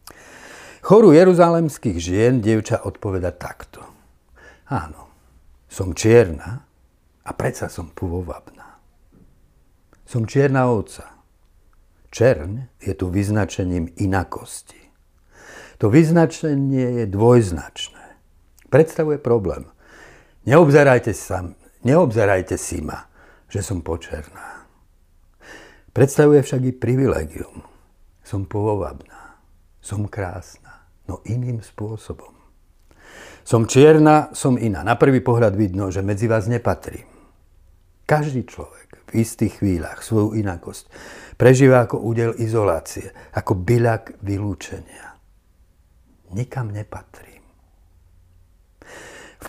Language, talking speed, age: Slovak, 90 wpm, 60-79